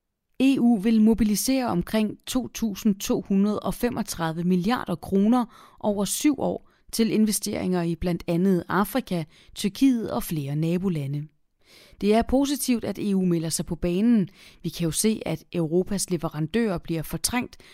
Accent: native